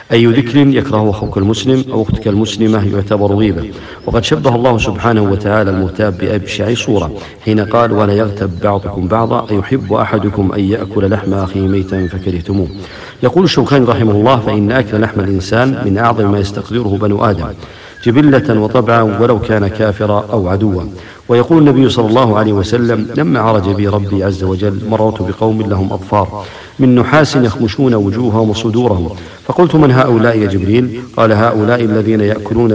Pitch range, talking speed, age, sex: 100-115 Hz, 155 wpm, 50-69, male